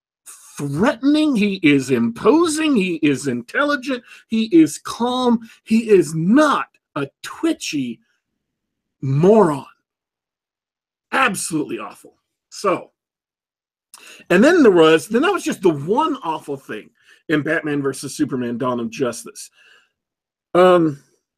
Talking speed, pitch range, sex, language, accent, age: 110 wpm, 145-230 Hz, male, English, American, 40-59